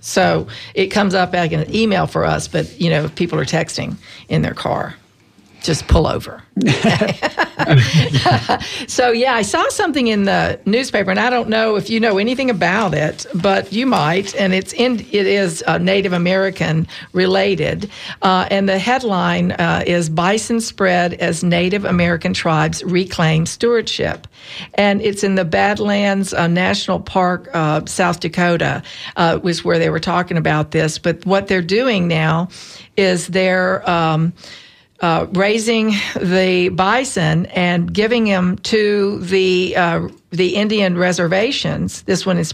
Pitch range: 175-200 Hz